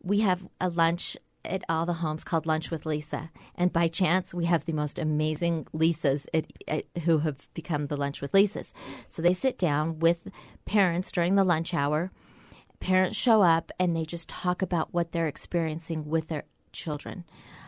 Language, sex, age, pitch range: English, female, 30-49, 150-175 Hz